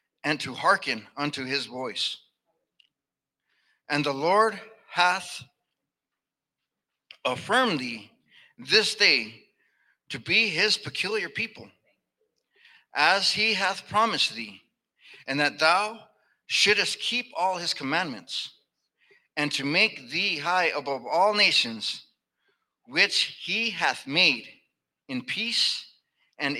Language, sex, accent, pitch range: English, male, American, 140-210 Hz